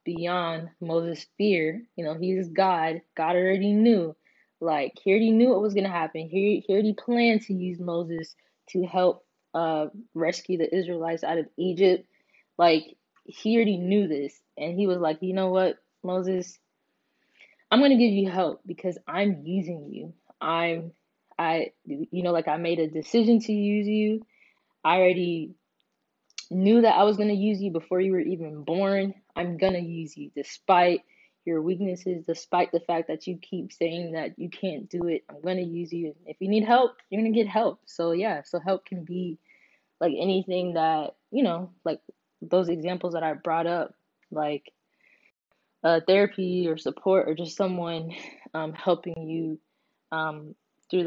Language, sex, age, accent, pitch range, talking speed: English, female, 20-39, American, 165-195 Hz, 175 wpm